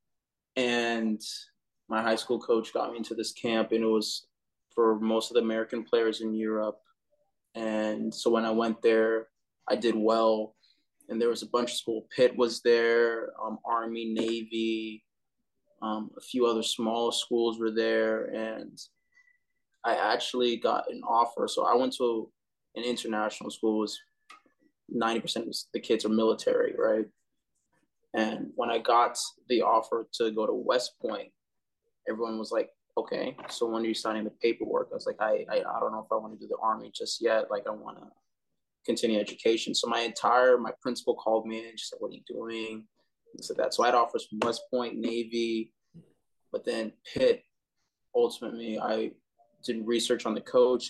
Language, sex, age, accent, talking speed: English, male, 20-39, American, 180 wpm